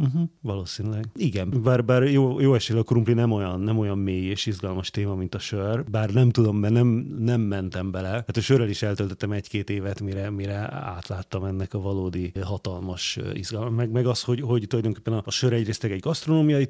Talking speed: 200 wpm